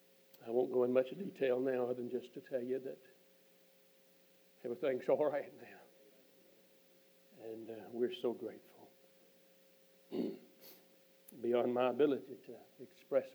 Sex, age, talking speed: male, 60-79, 125 wpm